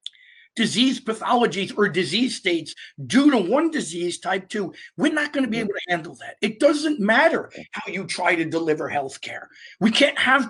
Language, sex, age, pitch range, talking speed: English, male, 50-69, 190-255 Hz, 175 wpm